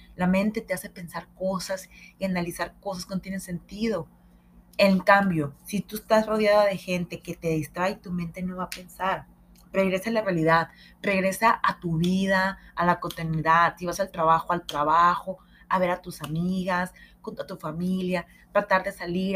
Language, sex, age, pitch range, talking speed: Spanish, female, 30-49, 165-195 Hz, 180 wpm